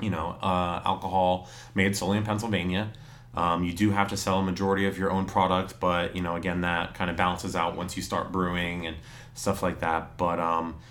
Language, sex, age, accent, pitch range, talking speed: English, male, 30-49, American, 90-110 Hz, 215 wpm